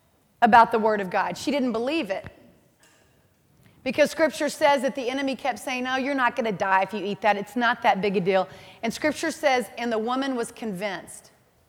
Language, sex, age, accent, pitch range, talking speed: English, female, 30-49, American, 235-295 Hz, 210 wpm